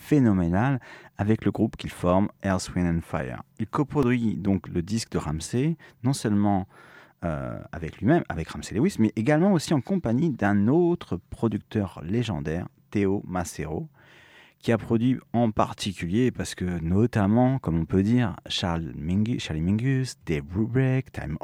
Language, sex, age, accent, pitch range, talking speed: French, male, 40-59, French, 90-125 Hz, 150 wpm